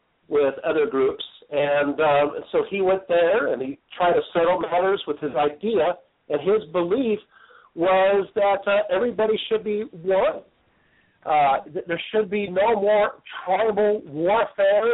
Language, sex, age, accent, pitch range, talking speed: English, male, 50-69, American, 160-215 Hz, 145 wpm